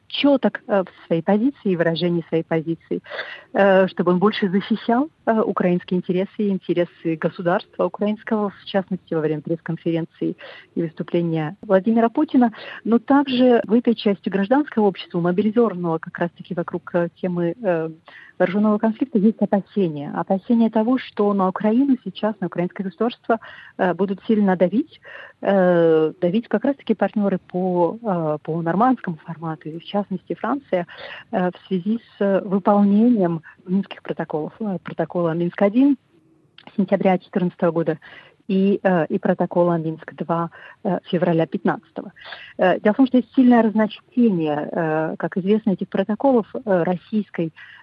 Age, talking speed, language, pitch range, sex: 40-59, 120 wpm, Russian, 175-215 Hz, female